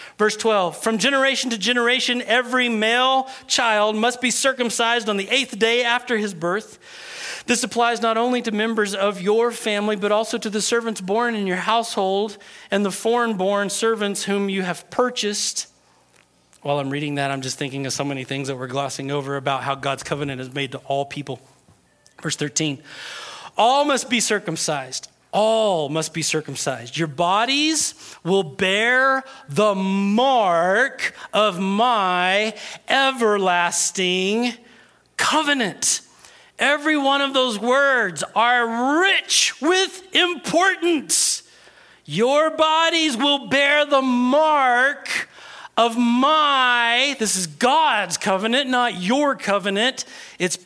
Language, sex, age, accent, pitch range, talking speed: English, male, 40-59, American, 180-255 Hz, 135 wpm